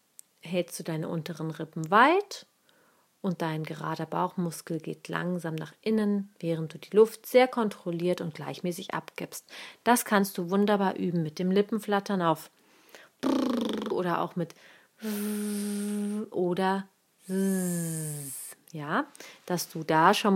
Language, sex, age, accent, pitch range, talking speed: German, female, 40-59, German, 165-210 Hz, 120 wpm